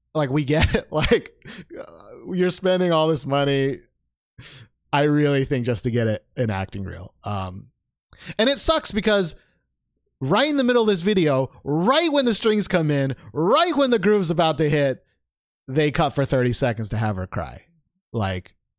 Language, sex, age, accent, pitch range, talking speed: English, male, 30-49, American, 130-190 Hz, 180 wpm